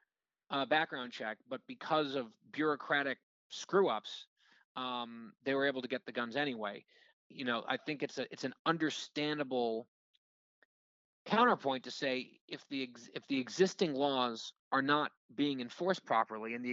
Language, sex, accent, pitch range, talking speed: English, male, American, 125-155 Hz, 160 wpm